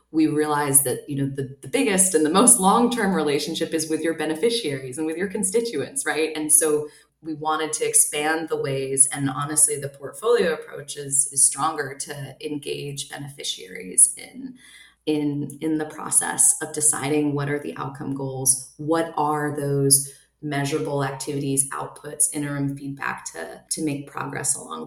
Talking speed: 160 wpm